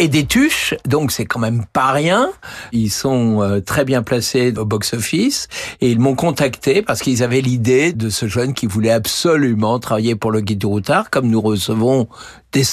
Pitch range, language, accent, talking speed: 110-140 Hz, French, French, 195 wpm